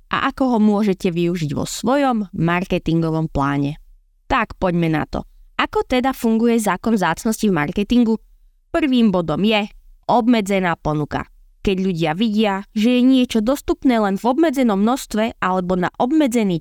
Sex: female